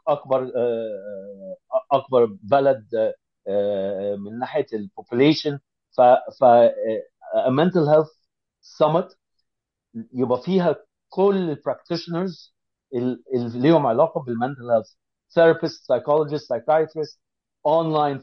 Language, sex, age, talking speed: English, male, 50-69, 70 wpm